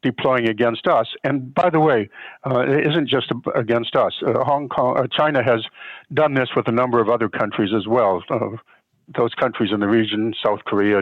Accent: American